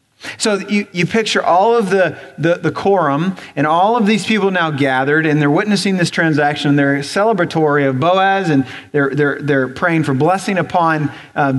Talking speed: 185 wpm